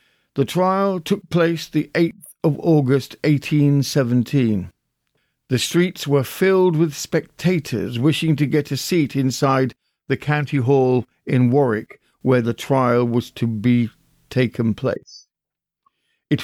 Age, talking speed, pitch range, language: 50-69, 130 wpm, 120-150 Hz, English